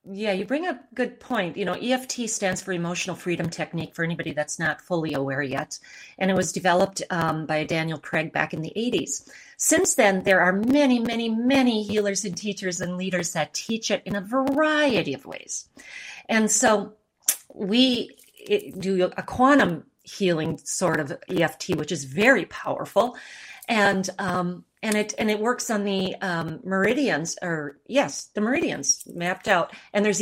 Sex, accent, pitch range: female, American, 170-235 Hz